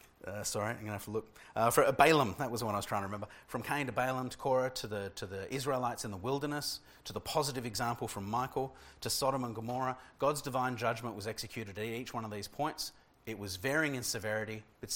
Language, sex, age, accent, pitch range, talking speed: English, male, 30-49, Australian, 110-130 Hz, 240 wpm